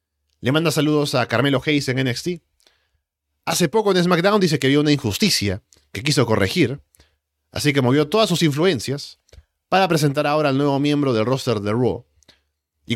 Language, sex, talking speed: Spanish, male, 170 wpm